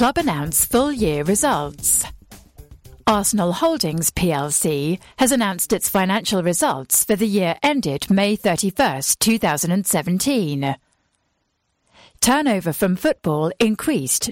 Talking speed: 95 wpm